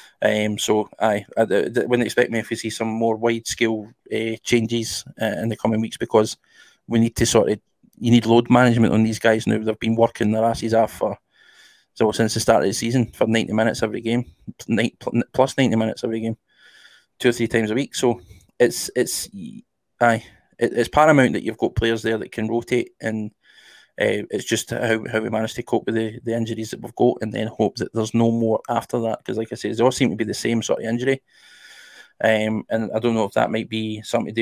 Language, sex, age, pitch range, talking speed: English, male, 20-39, 110-120 Hz, 230 wpm